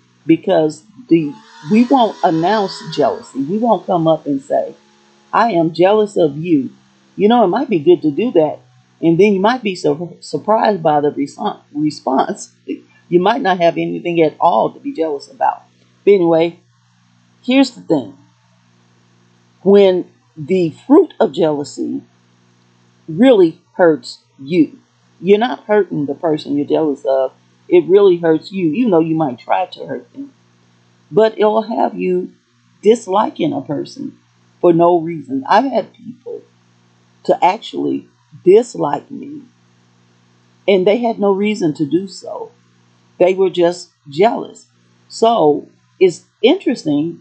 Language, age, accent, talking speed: English, 40-59, American, 140 wpm